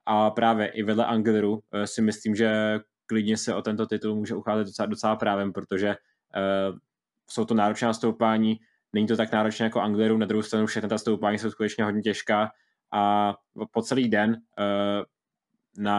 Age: 20-39